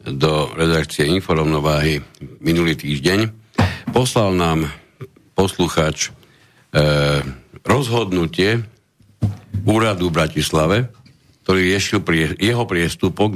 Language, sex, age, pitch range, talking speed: Slovak, male, 60-79, 85-110 Hz, 80 wpm